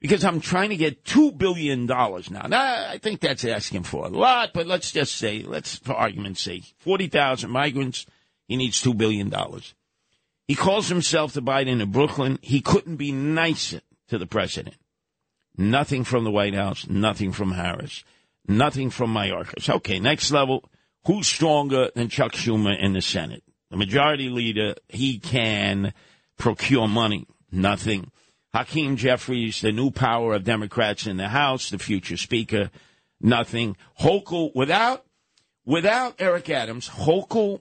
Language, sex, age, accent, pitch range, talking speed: English, male, 50-69, American, 110-145 Hz, 150 wpm